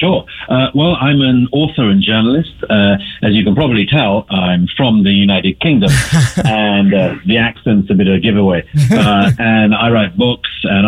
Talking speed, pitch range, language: 190 wpm, 95-115 Hz, English